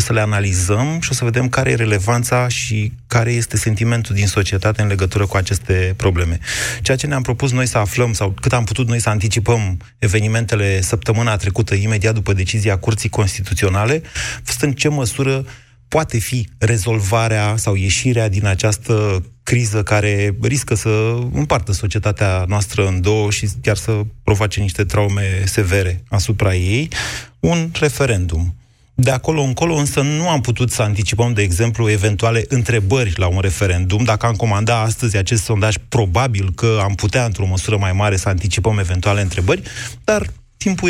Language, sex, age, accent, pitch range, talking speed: Romanian, male, 30-49, native, 100-125 Hz, 160 wpm